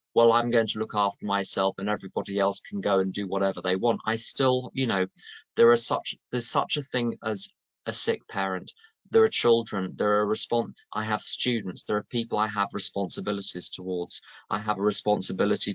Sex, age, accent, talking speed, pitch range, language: male, 20-39, British, 200 wpm, 100-135 Hz, English